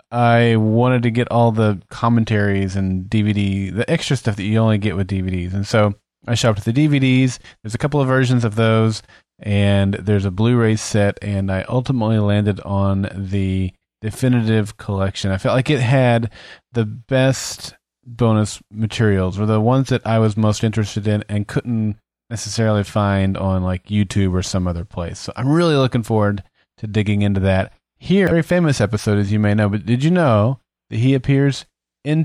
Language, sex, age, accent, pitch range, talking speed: English, male, 30-49, American, 100-125 Hz, 185 wpm